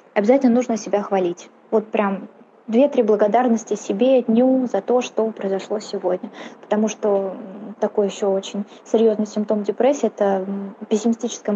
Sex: female